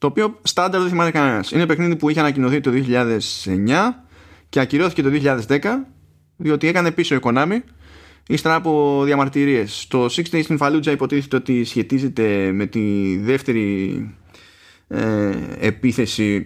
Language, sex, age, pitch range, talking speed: Greek, male, 20-39, 110-145 Hz, 130 wpm